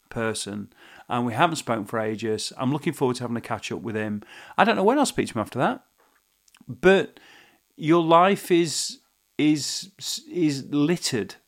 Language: English